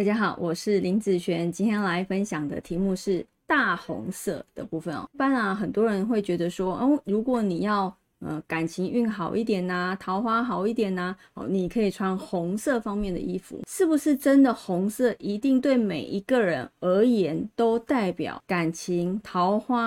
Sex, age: female, 20-39